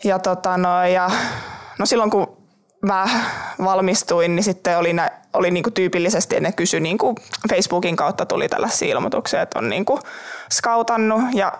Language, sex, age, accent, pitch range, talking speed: Finnish, male, 20-39, native, 175-215 Hz, 160 wpm